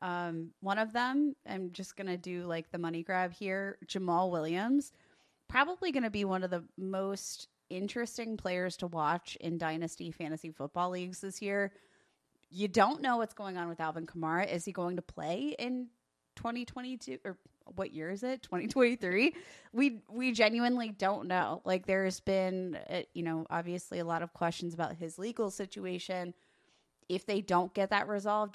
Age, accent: 20-39, American